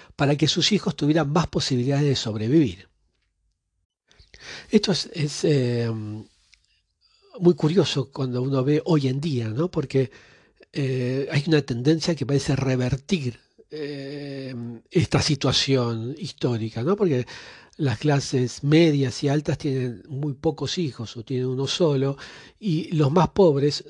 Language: Spanish